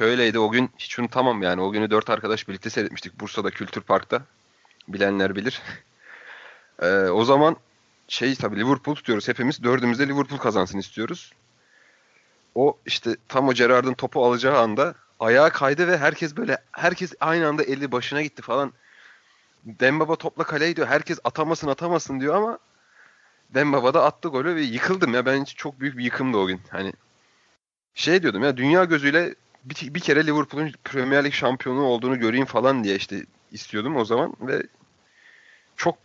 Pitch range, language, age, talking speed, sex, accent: 115-150 Hz, Turkish, 30-49, 160 wpm, male, native